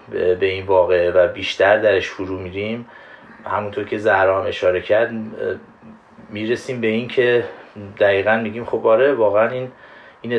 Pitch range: 105-125 Hz